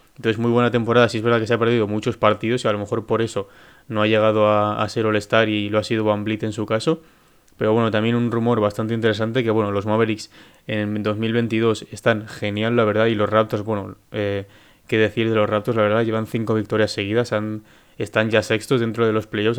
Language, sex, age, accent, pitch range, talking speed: Spanish, male, 20-39, Spanish, 105-120 Hz, 235 wpm